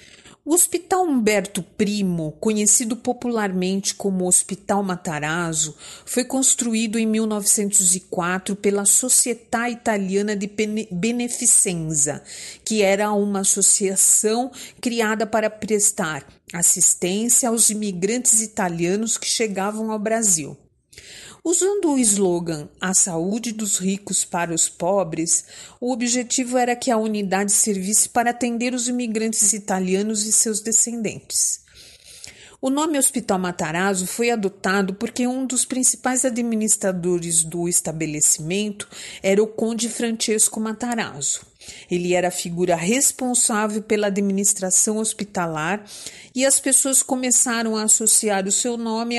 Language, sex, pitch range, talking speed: Portuguese, female, 190-235 Hz, 115 wpm